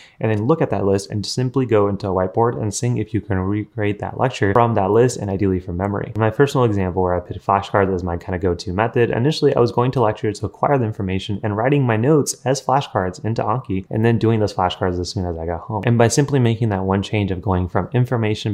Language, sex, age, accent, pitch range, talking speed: English, male, 20-39, American, 100-120 Hz, 260 wpm